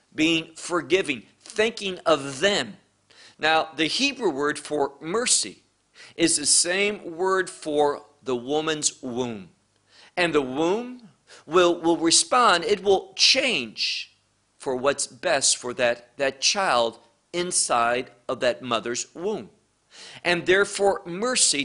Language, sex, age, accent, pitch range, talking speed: English, male, 50-69, American, 140-200 Hz, 120 wpm